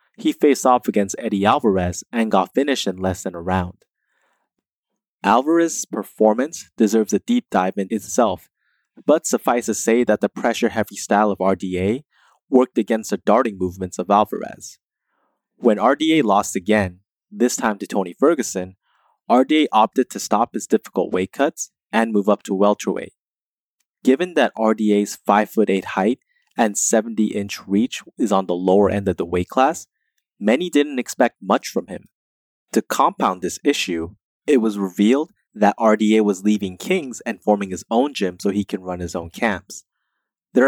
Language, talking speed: English, 160 wpm